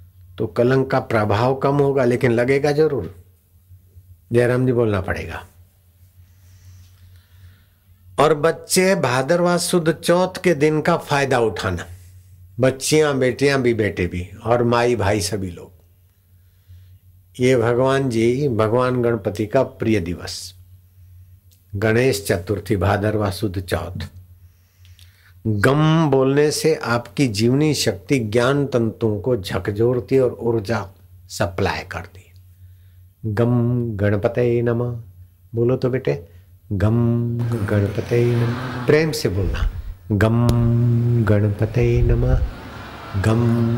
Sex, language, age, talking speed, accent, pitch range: male, Hindi, 60-79, 105 wpm, native, 95-125 Hz